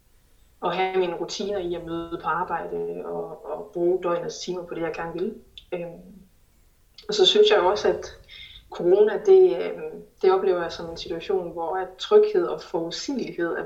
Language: Danish